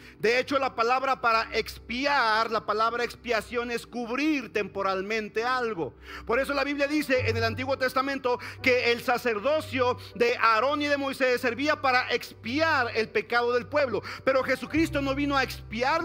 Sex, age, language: male, 50-69, Spanish